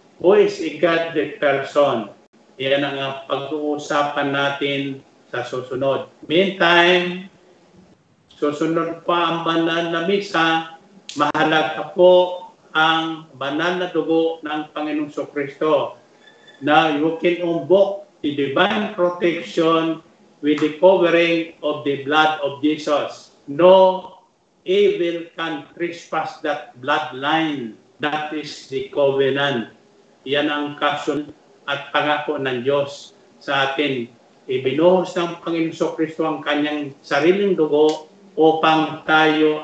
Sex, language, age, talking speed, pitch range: male, Filipino, 50-69, 105 wpm, 140-165 Hz